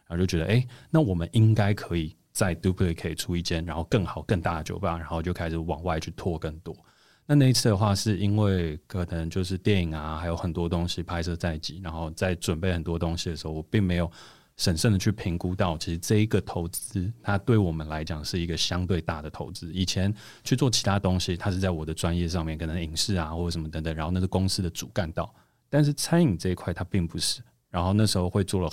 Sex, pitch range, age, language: male, 85-100 Hz, 30-49, Chinese